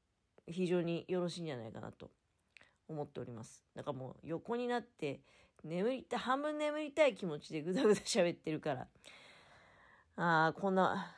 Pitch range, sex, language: 145-230 Hz, female, Japanese